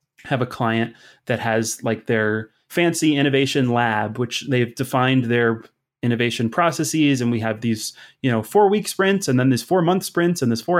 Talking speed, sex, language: 190 wpm, male, English